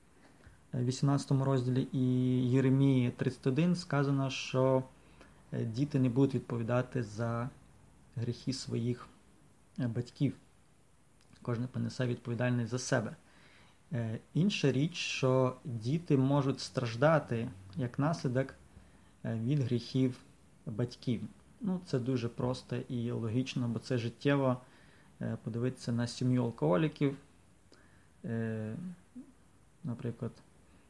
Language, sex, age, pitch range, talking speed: English, male, 20-39, 120-135 Hz, 90 wpm